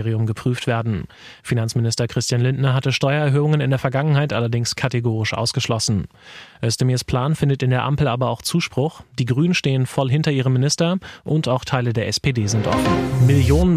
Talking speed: 160 wpm